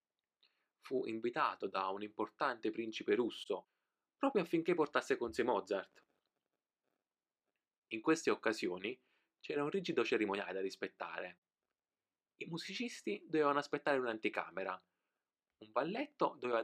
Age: 20-39